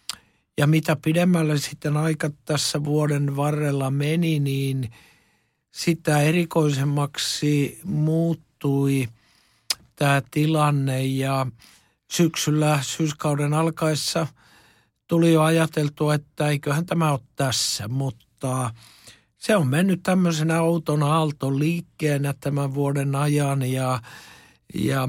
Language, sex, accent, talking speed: Finnish, male, native, 95 wpm